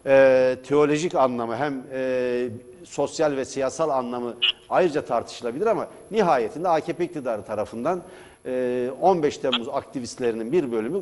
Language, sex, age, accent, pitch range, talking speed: Turkish, male, 60-79, native, 125-180 Hz, 120 wpm